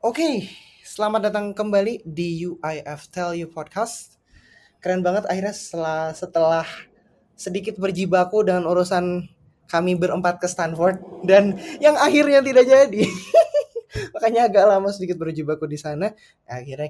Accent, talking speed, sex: native, 130 wpm, male